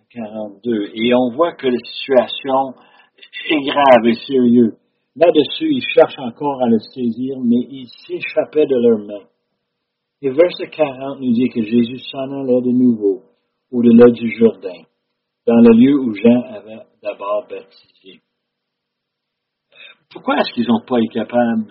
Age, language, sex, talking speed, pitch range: 60-79, French, male, 145 wpm, 120-160 Hz